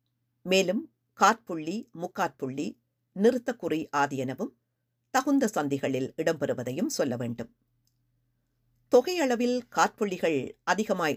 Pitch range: 120-185 Hz